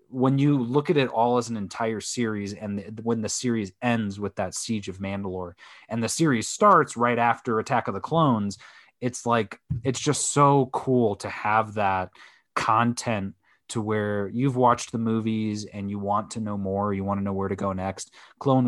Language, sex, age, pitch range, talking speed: English, male, 20-39, 100-125 Hz, 195 wpm